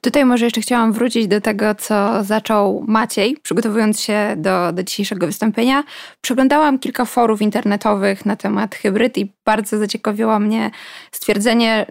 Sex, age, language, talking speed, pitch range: female, 20-39, Polish, 140 wpm, 215-250 Hz